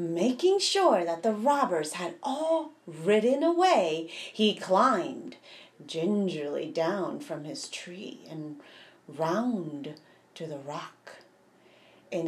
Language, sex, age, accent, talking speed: English, female, 30-49, American, 110 wpm